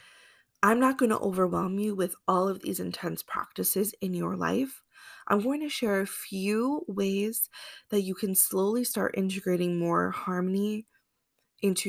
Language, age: English, 20-39